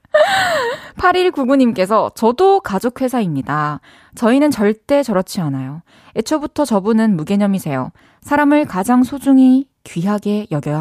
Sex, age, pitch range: female, 20-39, 180-270 Hz